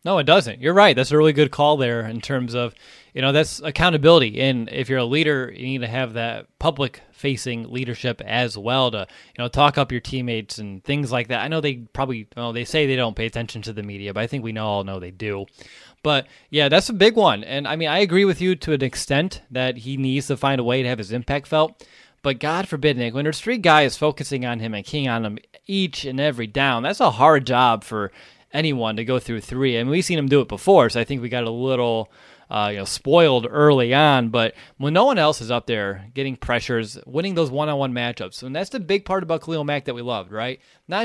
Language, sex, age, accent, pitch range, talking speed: English, male, 20-39, American, 120-155 Hz, 255 wpm